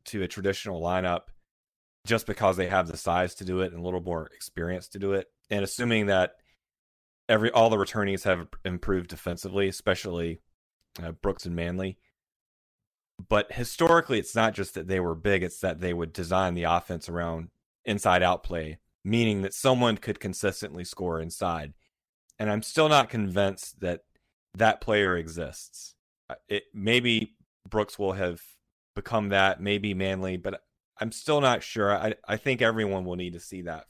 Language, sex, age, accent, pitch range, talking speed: English, male, 30-49, American, 85-105 Hz, 170 wpm